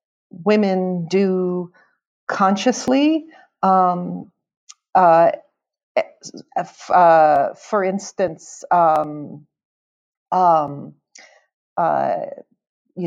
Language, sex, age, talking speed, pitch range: English, female, 50-69, 60 wpm, 165-210 Hz